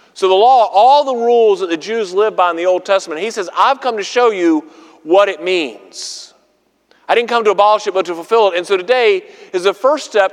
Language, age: English, 40-59